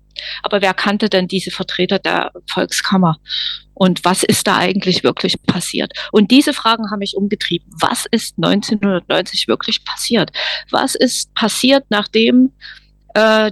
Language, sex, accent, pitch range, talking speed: German, female, German, 185-220 Hz, 140 wpm